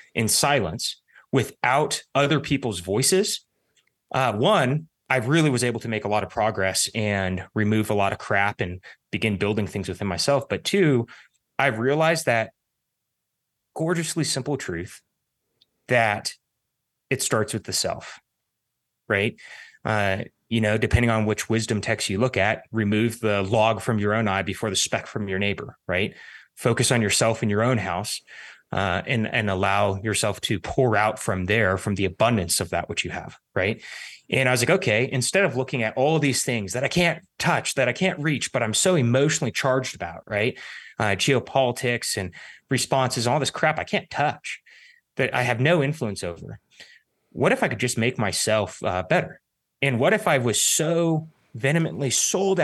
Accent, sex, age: American, male, 30-49